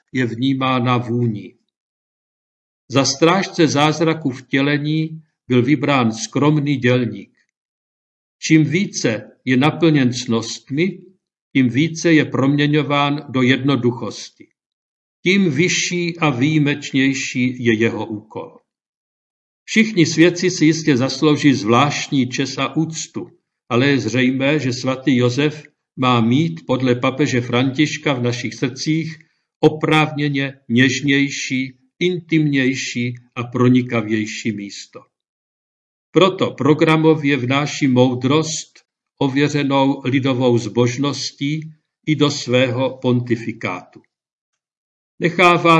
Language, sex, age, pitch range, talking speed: Czech, male, 50-69, 125-155 Hz, 95 wpm